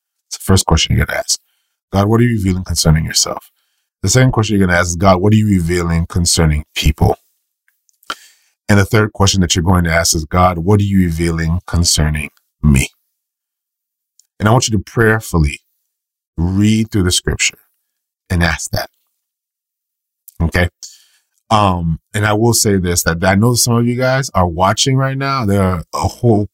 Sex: male